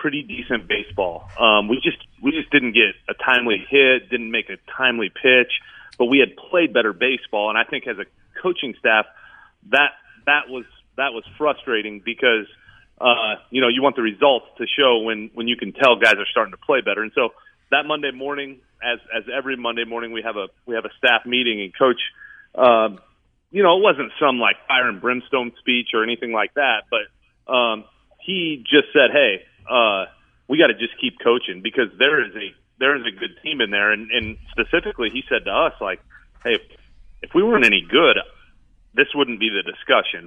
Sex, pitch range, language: male, 115-145 Hz, English